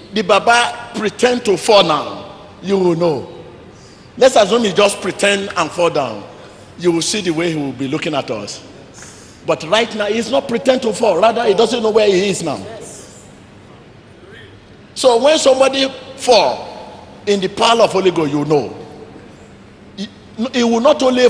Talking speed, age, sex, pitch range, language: 165 wpm, 50-69, male, 155-245 Hz, English